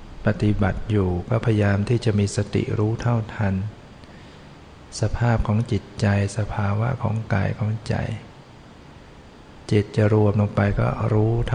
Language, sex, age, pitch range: Thai, male, 60-79, 105-115 Hz